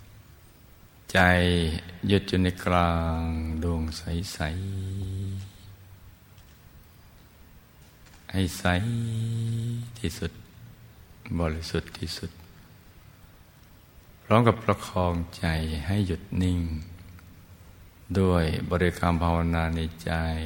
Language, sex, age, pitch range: Thai, male, 60-79, 85-100 Hz